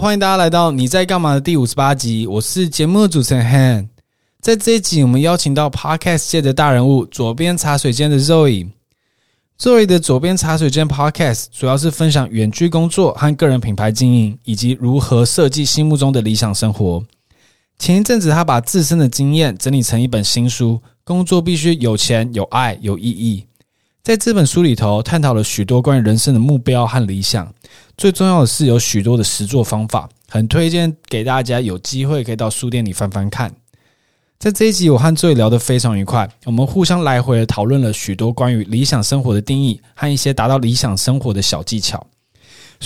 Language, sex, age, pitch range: Chinese, male, 20-39, 115-155 Hz